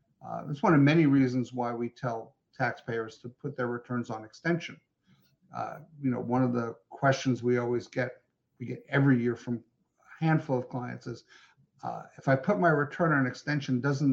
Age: 50-69